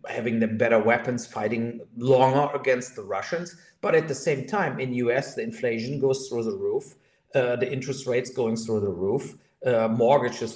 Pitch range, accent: 120-155 Hz, German